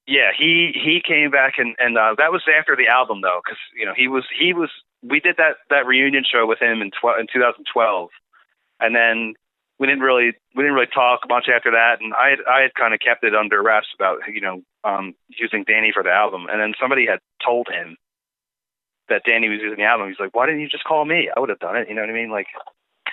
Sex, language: male, English